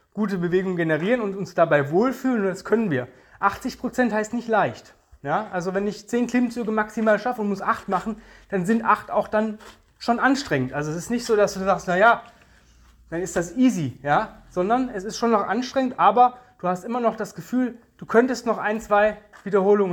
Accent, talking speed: German, 200 wpm